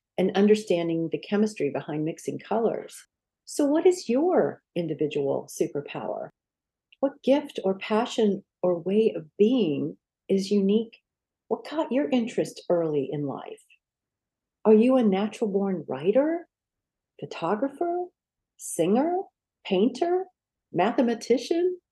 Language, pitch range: English, 185-285 Hz